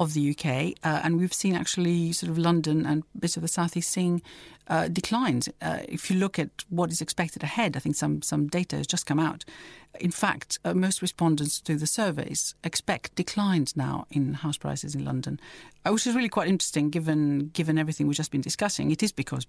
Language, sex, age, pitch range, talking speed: English, female, 50-69, 155-190 Hz, 210 wpm